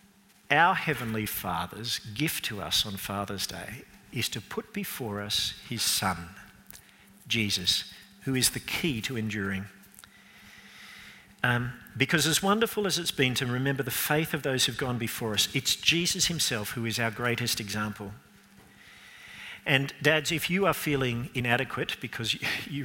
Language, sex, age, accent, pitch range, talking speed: English, male, 50-69, Australian, 105-145 Hz, 150 wpm